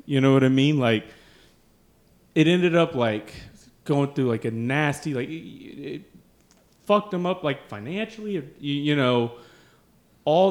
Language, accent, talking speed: English, American, 160 wpm